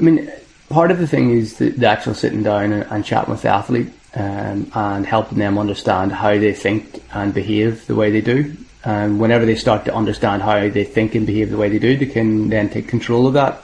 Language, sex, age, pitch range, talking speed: English, male, 20-39, 105-115 Hz, 230 wpm